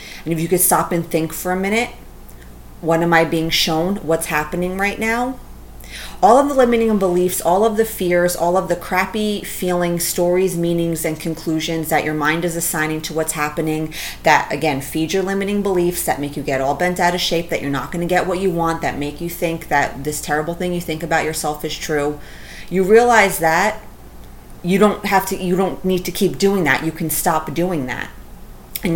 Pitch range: 150-180 Hz